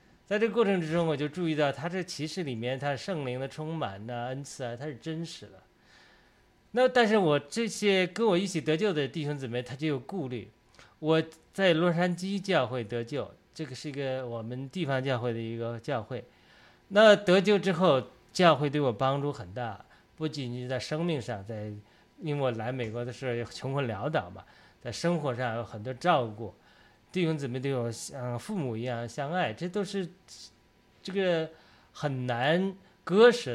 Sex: male